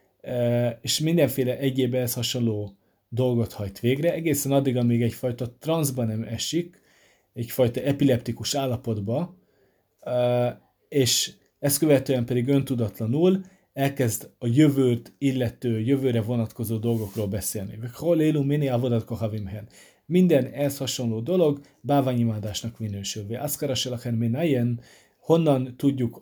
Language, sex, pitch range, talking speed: Hungarian, male, 115-140 Hz, 105 wpm